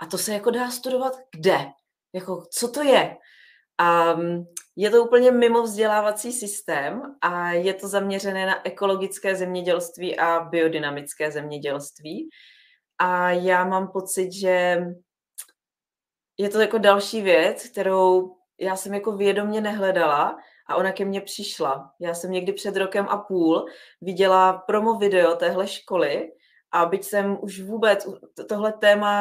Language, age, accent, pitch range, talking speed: Czech, 30-49, native, 170-200 Hz, 140 wpm